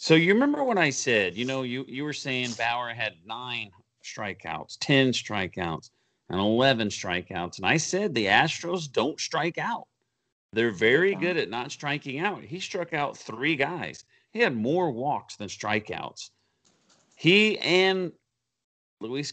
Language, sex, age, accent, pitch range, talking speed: English, male, 40-59, American, 115-150 Hz, 155 wpm